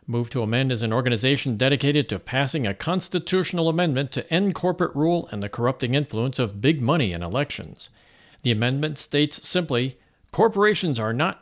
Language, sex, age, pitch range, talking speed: English, male, 50-69, 120-165 Hz, 170 wpm